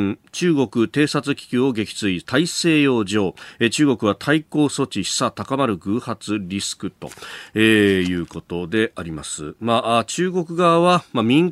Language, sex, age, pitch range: Japanese, male, 40-59, 95-150 Hz